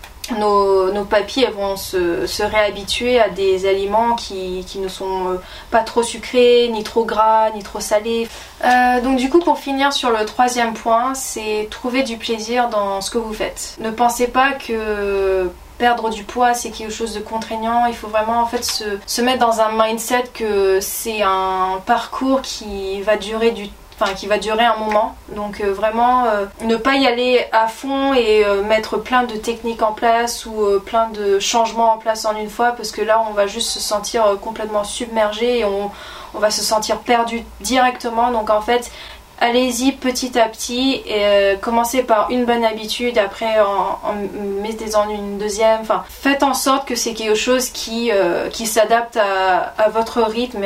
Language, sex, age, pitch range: French, female, 20-39, 205-235 Hz